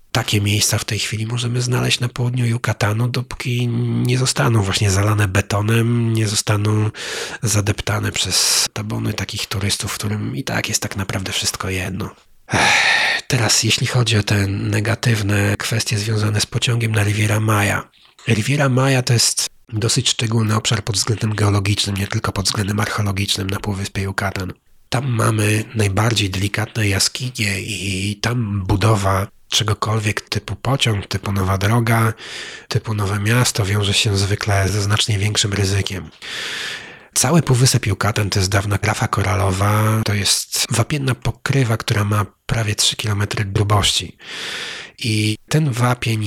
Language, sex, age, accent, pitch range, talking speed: Polish, male, 30-49, native, 100-120 Hz, 140 wpm